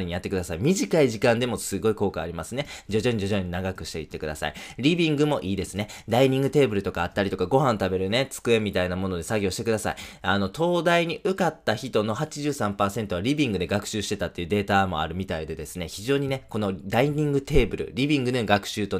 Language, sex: Japanese, male